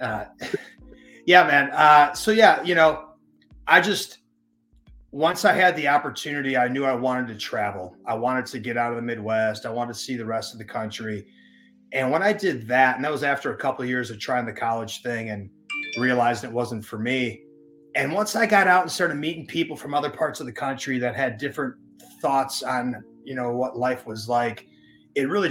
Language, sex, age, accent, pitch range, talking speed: English, male, 30-49, American, 115-145 Hz, 210 wpm